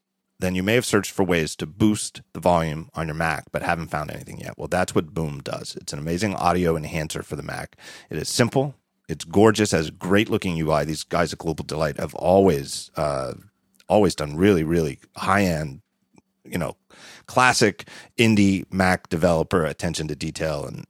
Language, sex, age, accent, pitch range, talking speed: English, male, 40-59, American, 80-105 Hz, 185 wpm